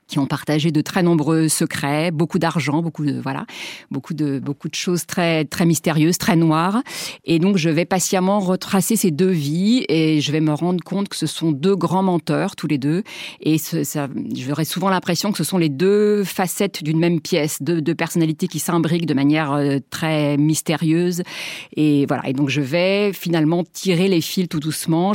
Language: French